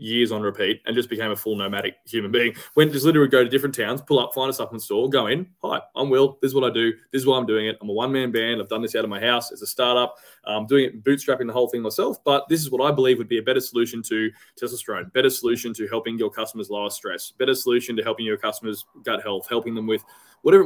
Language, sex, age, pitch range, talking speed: English, male, 20-39, 115-140 Hz, 275 wpm